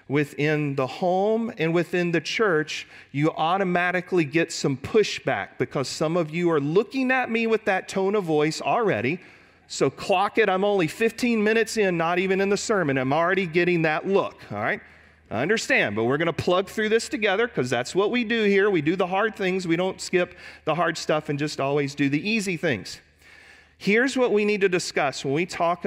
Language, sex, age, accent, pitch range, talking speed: English, male, 40-59, American, 145-200 Hz, 205 wpm